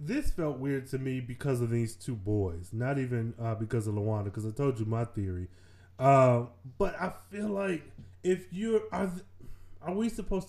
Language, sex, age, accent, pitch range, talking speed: English, male, 20-39, American, 105-160 Hz, 195 wpm